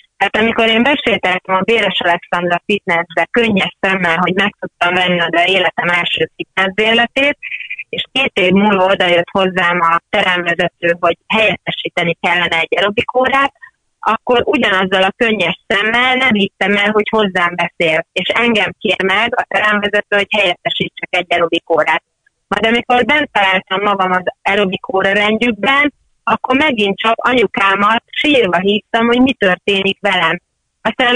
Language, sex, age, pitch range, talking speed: Hungarian, female, 30-49, 185-240 Hz, 135 wpm